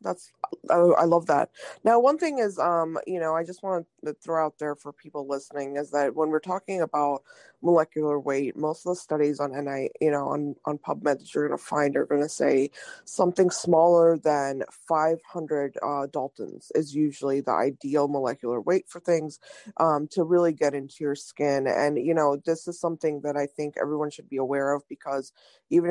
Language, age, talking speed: English, 20-39, 195 wpm